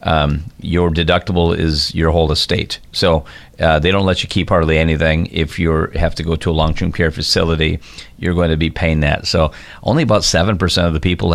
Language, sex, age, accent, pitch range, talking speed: English, male, 40-59, American, 80-90 Hz, 210 wpm